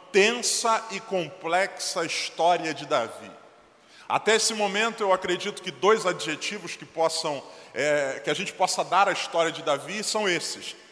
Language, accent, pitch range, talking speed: Portuguese, Brazilian, 170-210 Hz, 155 wpm